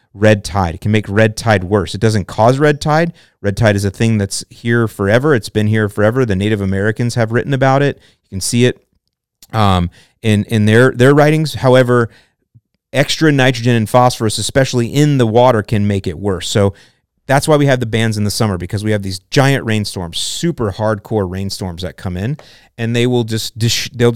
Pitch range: 105-125 Hz